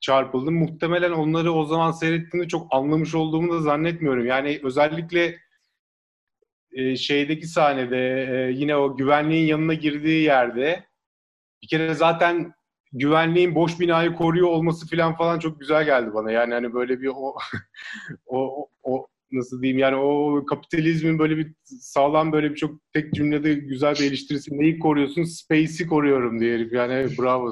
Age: 30-49